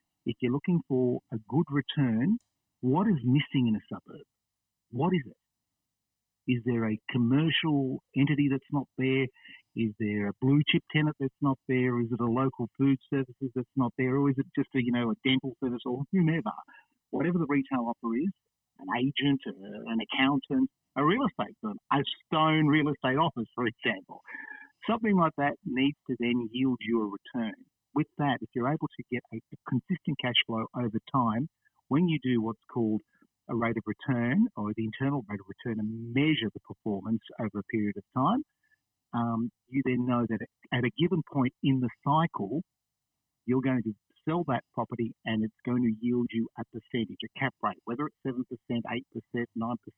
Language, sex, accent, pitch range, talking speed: English, male, Australian, 115-145 Hz, 185 wpm